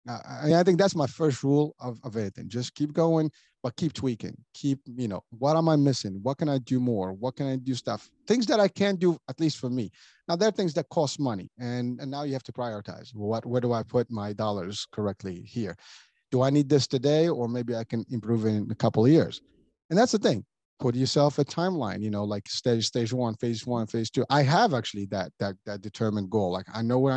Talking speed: 245 wpm